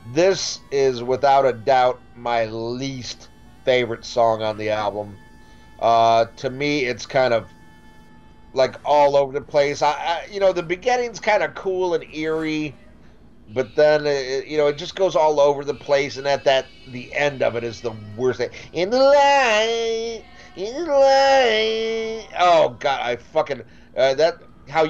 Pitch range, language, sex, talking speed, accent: 115-150 Hz, English, male, 170 wpm, American